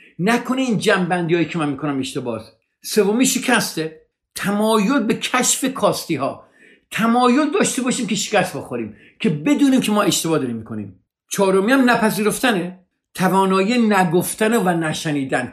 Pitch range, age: 130-210 Hz, 50-69